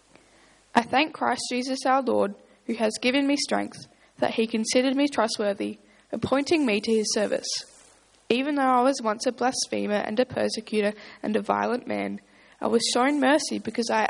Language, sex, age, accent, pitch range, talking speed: English, female, 10-29, Australian, 205-250 Hz, 175 wpm